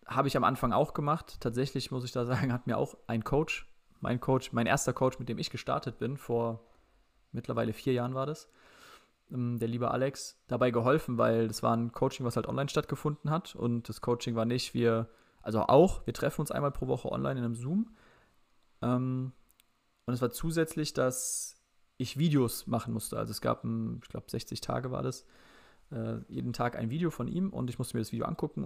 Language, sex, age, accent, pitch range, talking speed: German, male, 20-39, German, 115-130 Hz, 200 wpm